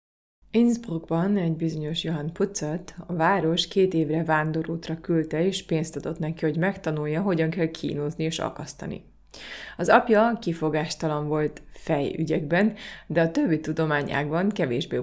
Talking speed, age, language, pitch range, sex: 130 wpm, 30-49, Hungarian, 155-180 Hz, female